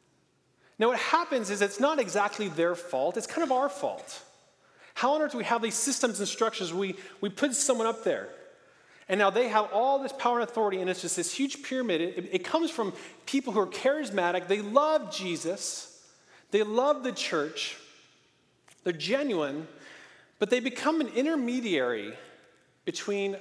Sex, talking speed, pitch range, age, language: male, 175 wpm, 180-270 Hz, 30-49, English